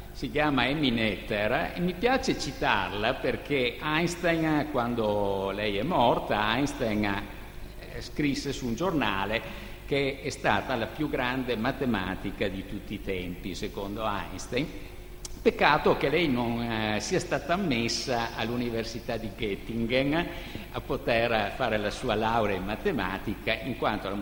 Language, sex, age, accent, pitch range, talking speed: Italian, male, 50-69, native, 105-150 Hz, 130 wpm